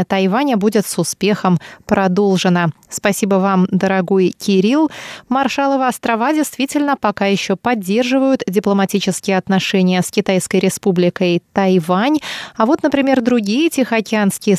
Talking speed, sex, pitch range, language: 105 wpm, female, 195-245 Hz, Russian